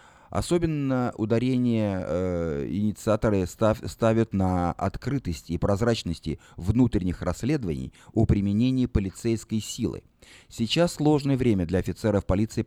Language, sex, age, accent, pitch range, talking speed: Russian, male, 30-49, native, 90-125 Hz, 100 wpm